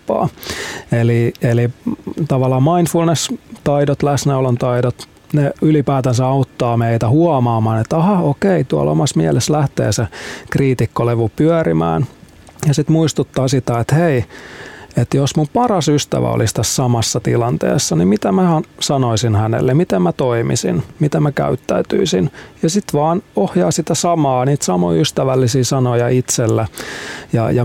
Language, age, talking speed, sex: Finnish, 30-49, 130 wpm, male